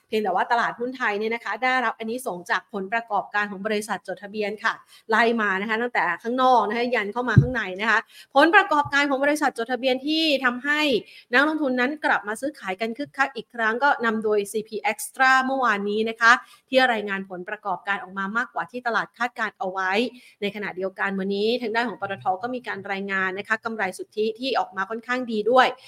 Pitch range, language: 205-255 Hz, Thai